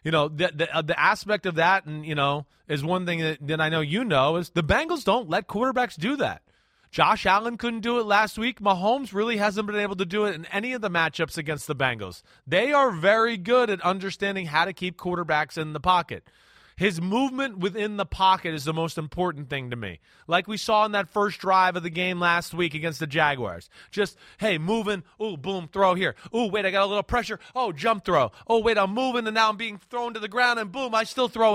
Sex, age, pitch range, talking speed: male, 30-49, 165-215 Hz, 240 wpm